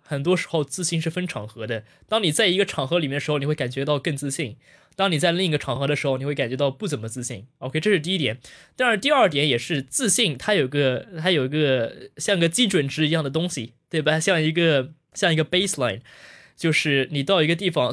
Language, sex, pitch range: Chinese, male, 130-170 Hz